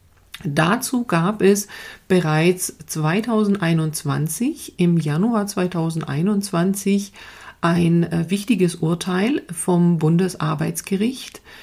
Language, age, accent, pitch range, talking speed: German, 40-59, German, 155-185 Hz, 70 wpm